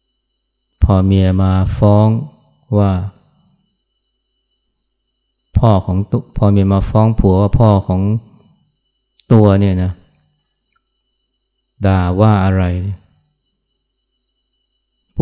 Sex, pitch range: male, 95-130 Hz